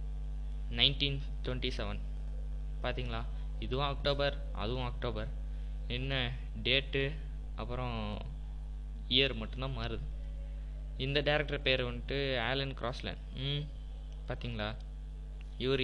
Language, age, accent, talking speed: Tamil, 20-39, native, 85 wpm